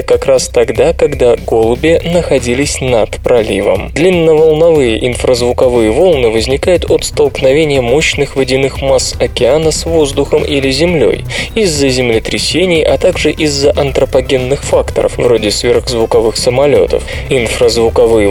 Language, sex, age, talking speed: Russian, male, 20-39, 110 wpm